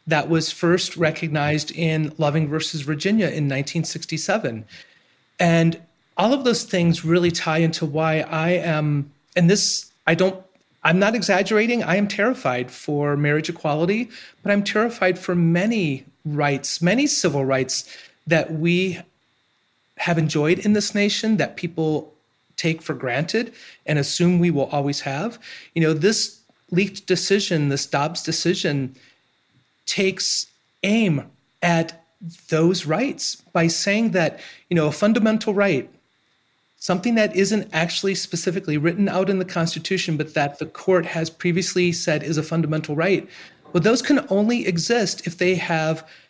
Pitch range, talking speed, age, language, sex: 160-195 Hz, 145 wpm, 30-49, English, male